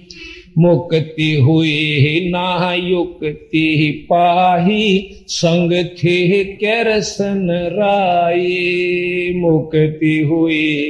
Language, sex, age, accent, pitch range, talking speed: Hindi, male, 50-69, native, 170-200 Hz, 60 wpm